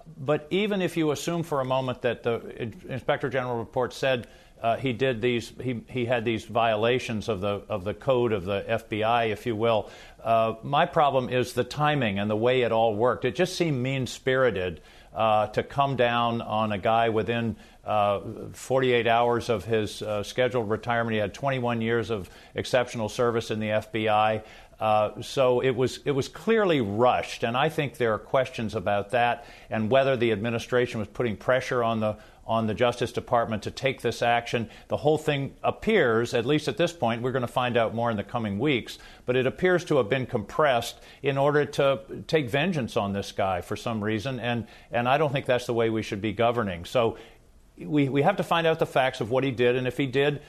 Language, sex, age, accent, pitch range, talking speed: English, male, 50-69, American, 110-130 Hz, 210 wpm